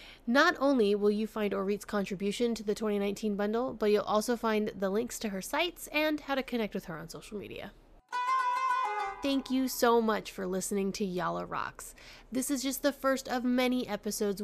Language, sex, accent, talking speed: English, female, American, 190 wpm